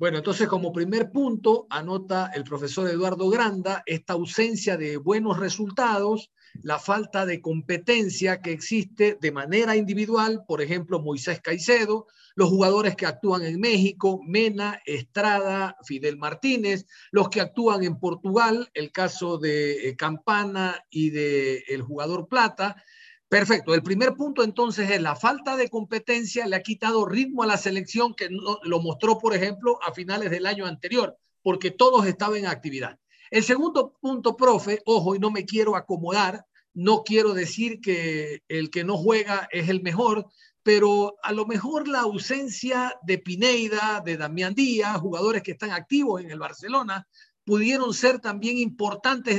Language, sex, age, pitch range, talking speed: Spanish, male, 50-69, 180-225 Hz, 155 wpm